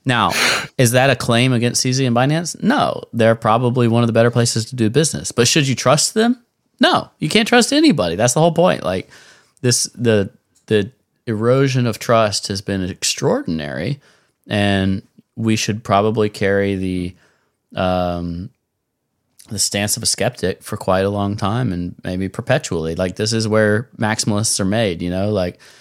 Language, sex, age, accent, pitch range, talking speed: English, male, 30-49, American, 90-120 Hz, 170 wpm